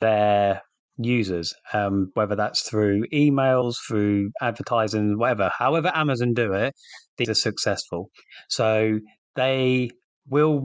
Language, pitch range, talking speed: English, 105-130 Hz, 115 wpm